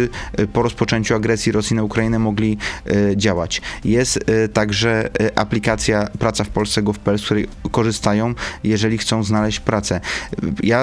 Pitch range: 110-130 Hz